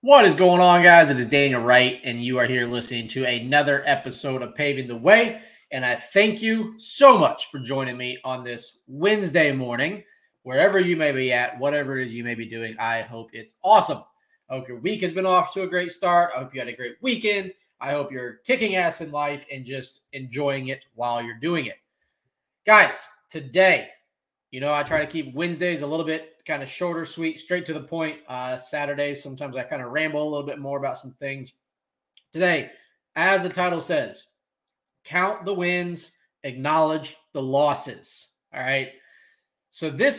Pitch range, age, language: 130-180 Hz, 20-39, English